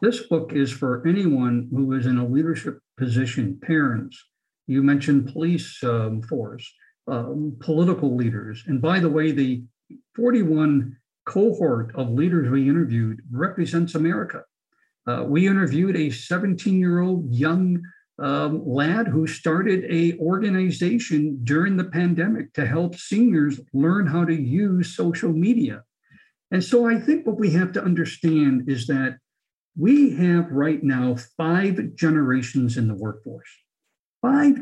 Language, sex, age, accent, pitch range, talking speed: English, male, 60-79, American, 140-200 Hz, 135 wpm